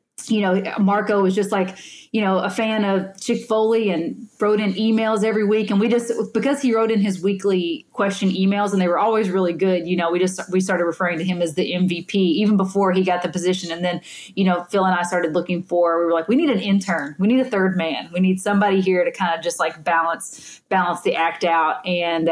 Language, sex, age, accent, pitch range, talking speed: English, female, 30-49, American, 170-200 Hz, 245 wpm